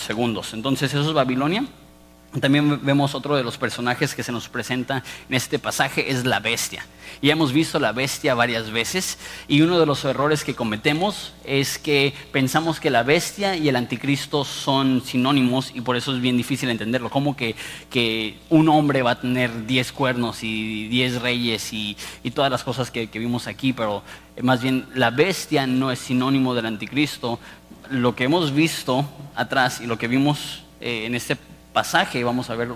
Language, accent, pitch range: Spanish, Mexican, 120-150 Hz